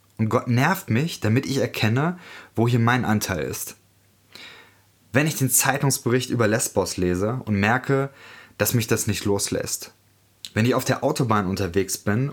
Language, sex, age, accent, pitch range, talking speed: German, male, 20-39, German, 100-125 Hz, 160 wpm